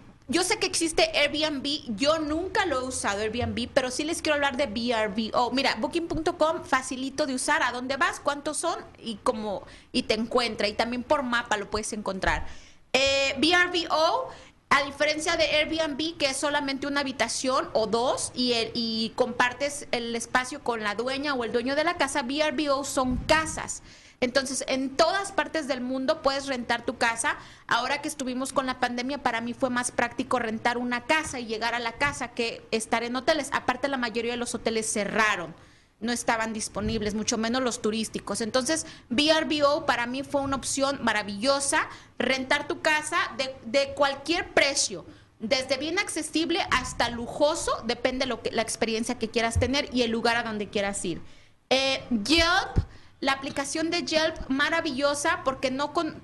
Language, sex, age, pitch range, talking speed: Spanish, female, 30-49, 235-300 Hz, 175 wpm